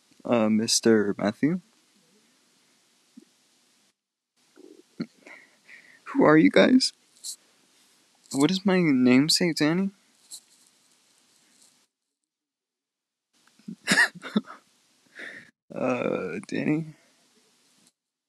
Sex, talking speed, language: male, 50 wpm, English